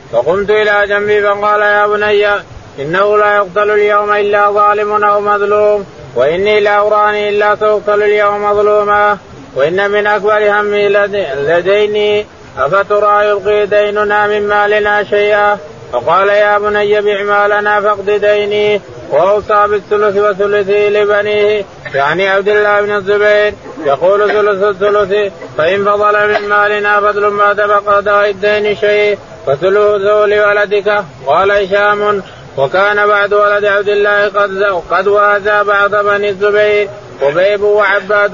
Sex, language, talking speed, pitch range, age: male, Arabic, 120 wpm, 205-210 Hz, 20-39